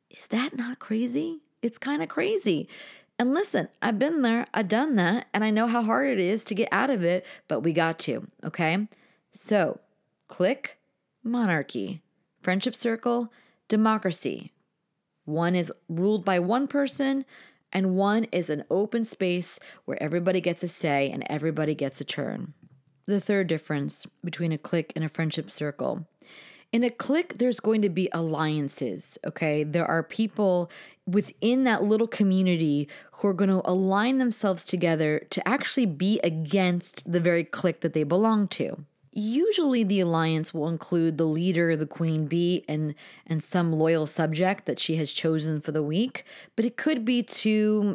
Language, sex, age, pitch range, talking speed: English, female, 30-49, 165-215 Hz, 165 wpm